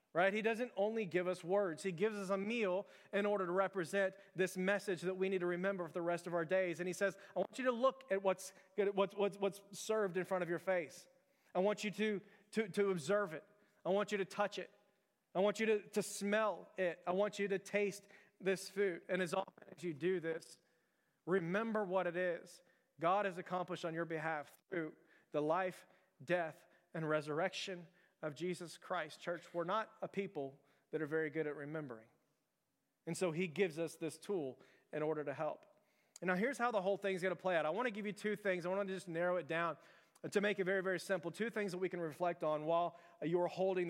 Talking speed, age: 220 wpm, 30-49